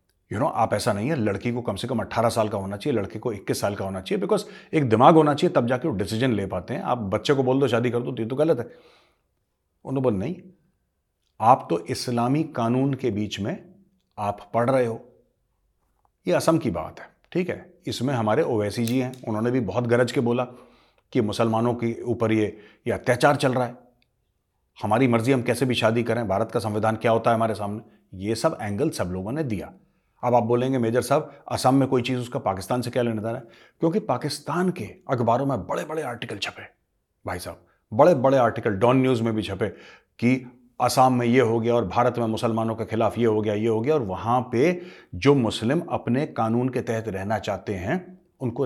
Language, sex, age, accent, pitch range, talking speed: Hindi, male, 30-49, native, 110-130 Hz, 195 wpm